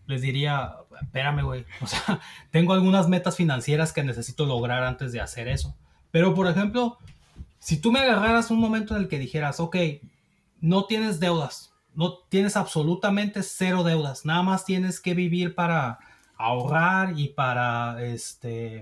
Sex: male